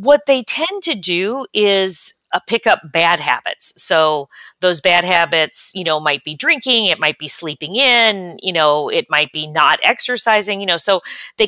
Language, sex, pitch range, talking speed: English, female, 165-220 Hz, 190 wpm